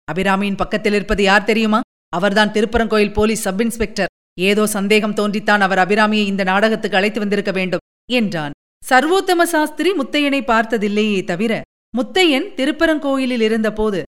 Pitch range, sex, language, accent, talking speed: 200-285 Hz, female, Tamil, native, 125 wpm